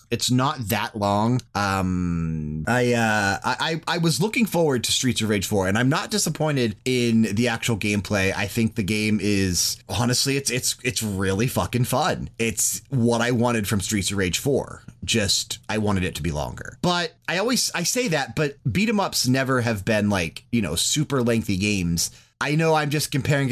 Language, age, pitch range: English, 30-49, 105-130 Hz